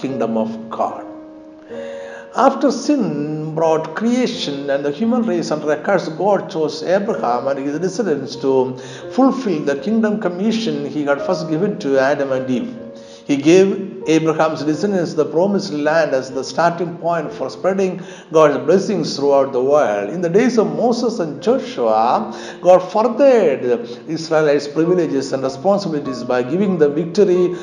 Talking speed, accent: 150 wpm, Indian